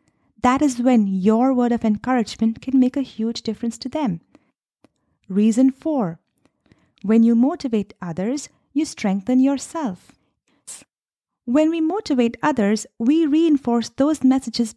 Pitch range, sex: 220-275 Hz, female